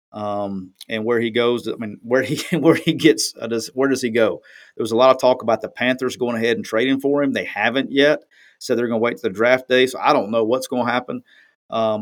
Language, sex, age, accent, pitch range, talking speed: English, male, 40-59, American, 110-130 Hz, 270 wpm